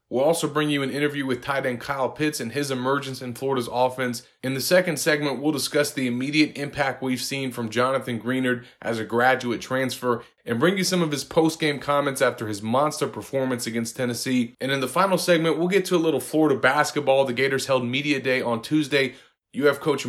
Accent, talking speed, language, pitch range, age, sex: American, 210 wpm, English, 125-145 Hz, 30-49, male